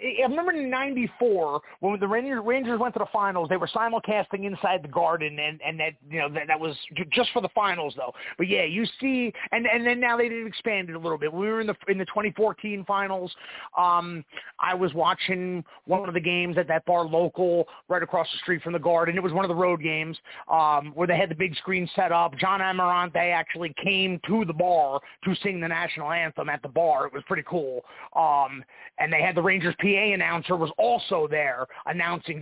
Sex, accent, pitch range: male, American, 170-220 Hz